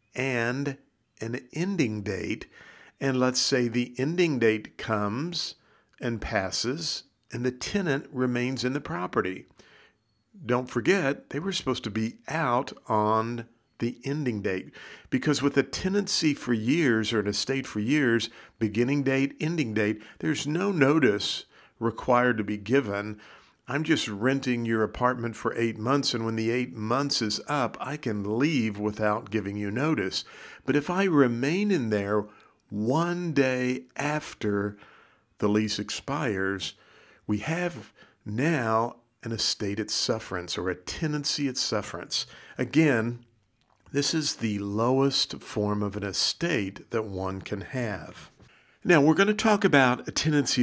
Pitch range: 110-145 Hz